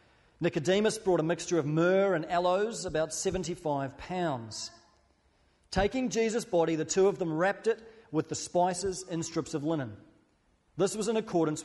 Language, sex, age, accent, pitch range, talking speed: English, male, 40-59, Australian, 135-185 Hz, 160 wpm